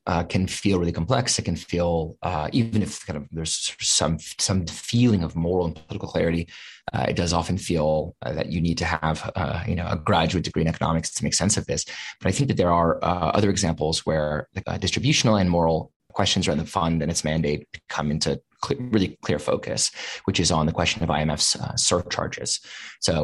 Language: English